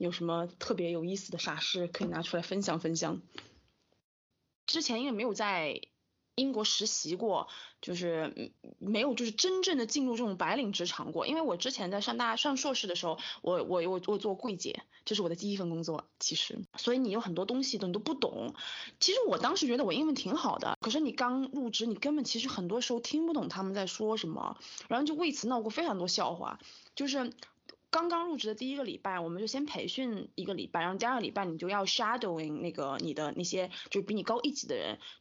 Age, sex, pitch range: 20-39, female, 180-245 Hz